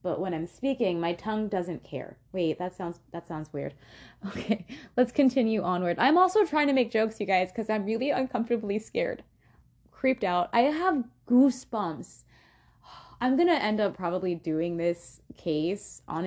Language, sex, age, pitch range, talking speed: English, female, 20-39, 165-220 Hz, 165 wpm